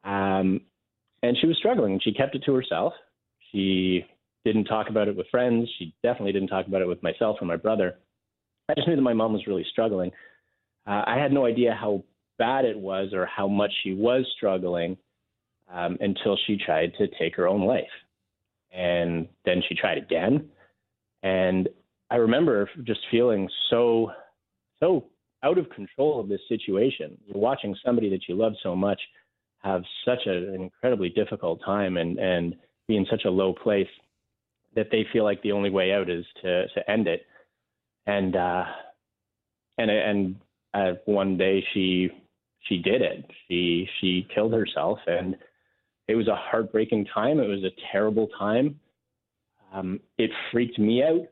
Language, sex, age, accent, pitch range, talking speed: English, male, 30-49, American, 95-110 Hz, 170 wpm